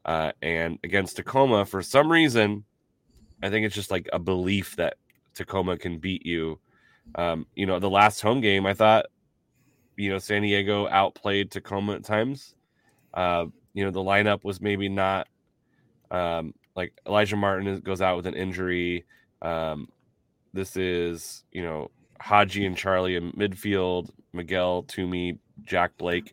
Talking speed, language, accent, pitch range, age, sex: 155 wpm, English, American, 90-105 Hz, 20-39, male